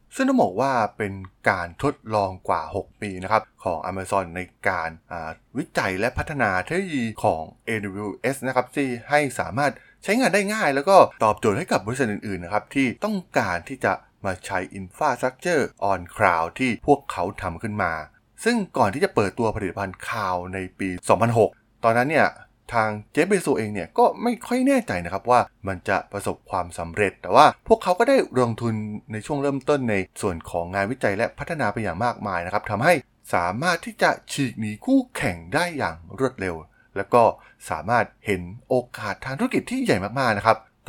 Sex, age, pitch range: male, 20-39, 95-145 Hz